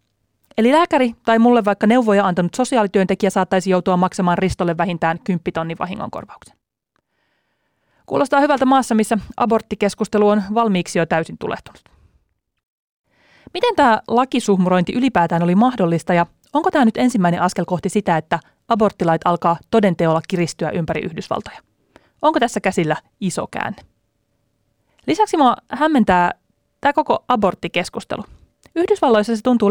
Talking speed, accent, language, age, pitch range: 120 wpm, native, Finnish, 30-49, 175-235 Hz